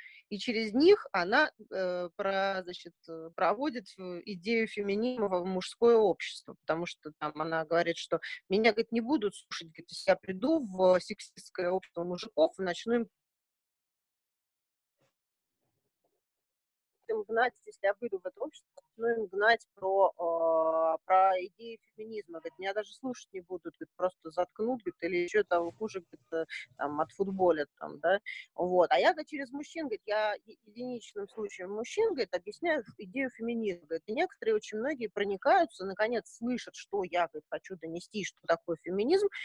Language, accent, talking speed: Russian, native, 150 wpm